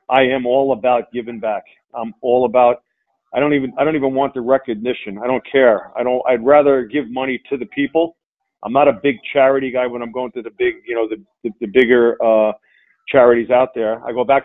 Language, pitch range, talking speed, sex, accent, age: English, 120-140 Hz, 230 wpm, male, American, 40-59